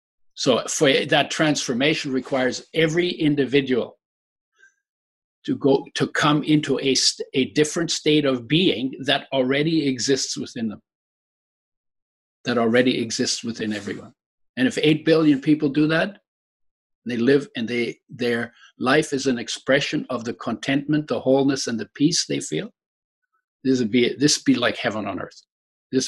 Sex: male